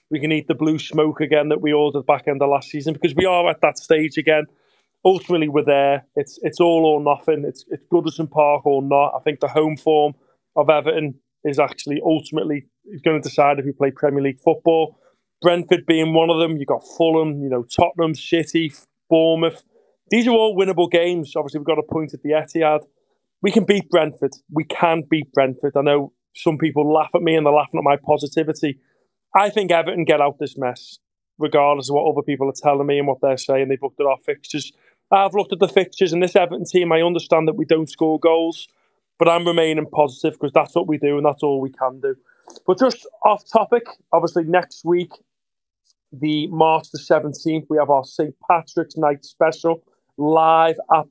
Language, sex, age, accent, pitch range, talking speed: English, male, 30-49, British, 145-165 Hz, 210 wpm